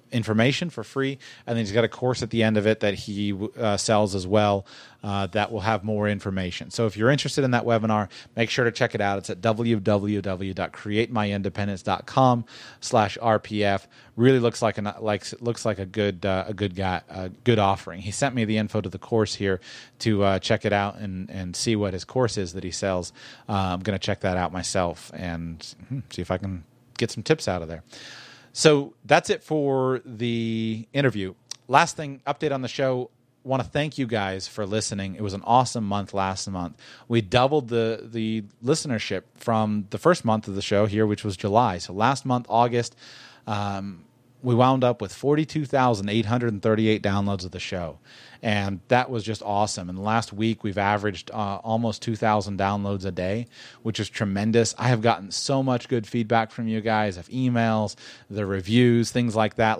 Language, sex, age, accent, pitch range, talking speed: English, male, 30-49, American, 100-120 Hz, 200 wpm